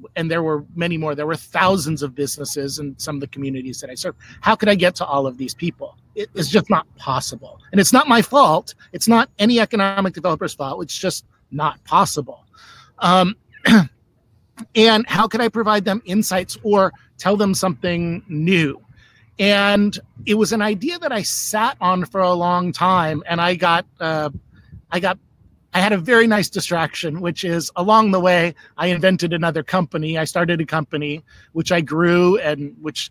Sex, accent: male, American